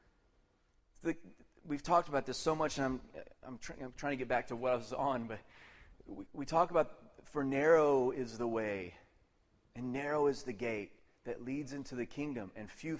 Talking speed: 200 wpm